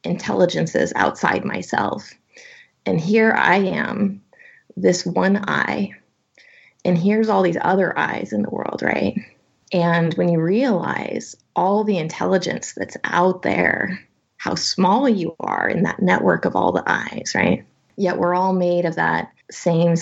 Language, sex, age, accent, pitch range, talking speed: English, female, 20-39, American, 170-220 Hz, 145 wpm